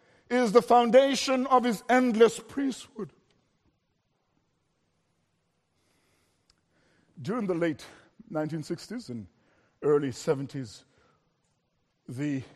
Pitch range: 125-170 Hz